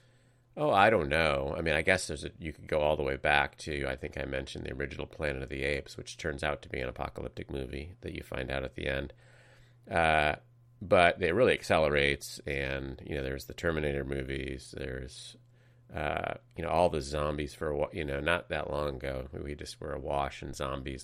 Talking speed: 215 wpm